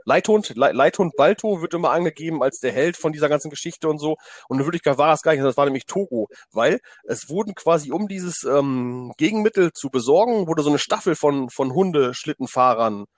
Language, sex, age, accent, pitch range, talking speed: German, male, 30-49, German, 130-170 Hz, 200 wpm